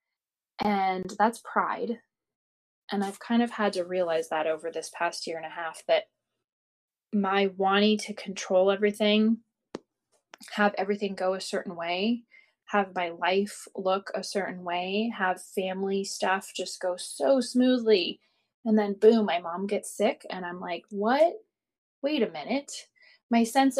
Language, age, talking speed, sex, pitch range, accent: English, 20-39, 150 wpm, female, 185-230 Hz, American